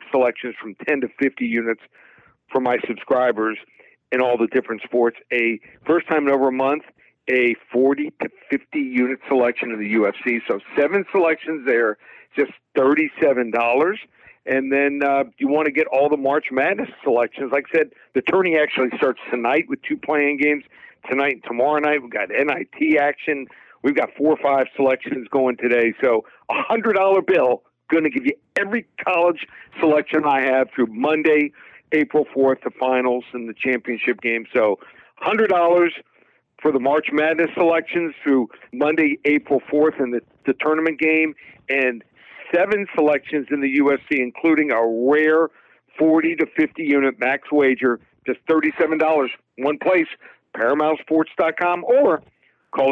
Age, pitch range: 50-69, 130-160 Hz